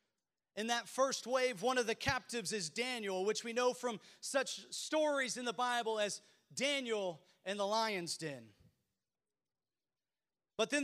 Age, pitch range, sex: 30-49, 215-265 Hz, male